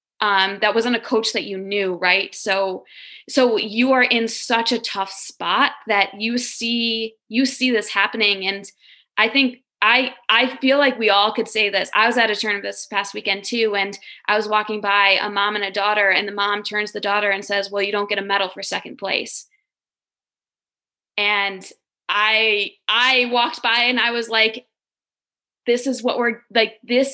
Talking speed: 195 wpm